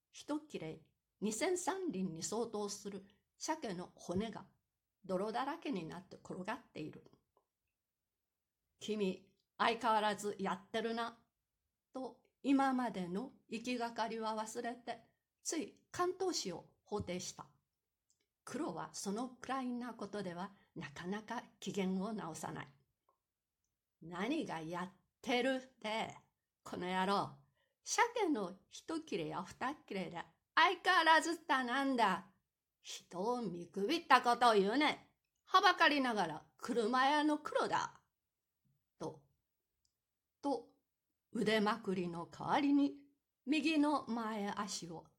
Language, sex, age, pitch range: Japanese, female, 60-79, 195-275 Hz